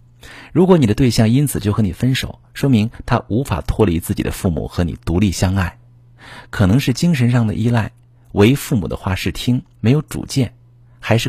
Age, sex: 50-69, male